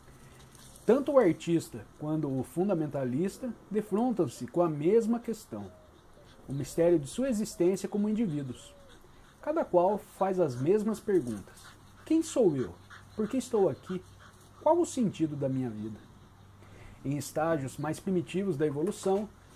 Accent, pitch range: Brazilian, 140-210 Hz